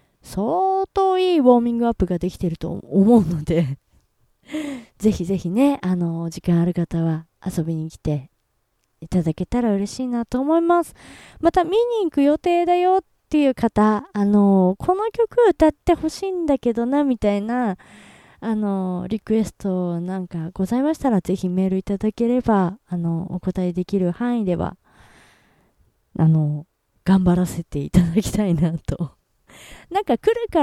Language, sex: Japanese, female